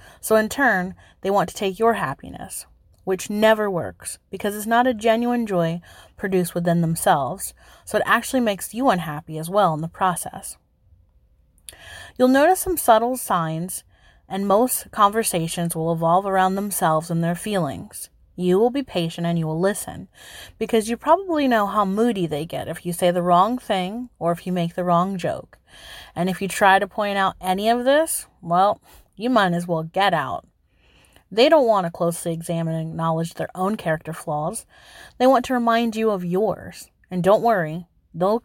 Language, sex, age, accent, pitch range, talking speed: English, female, 30-49, American, 170-230 Hz, 180 wpm